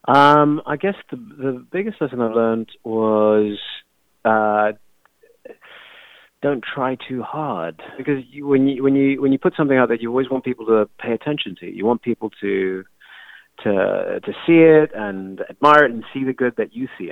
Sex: male